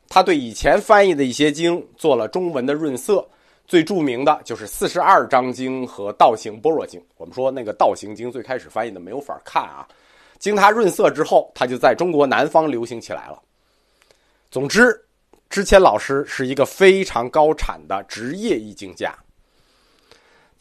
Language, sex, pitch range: Chinese, male, 130-210 Hz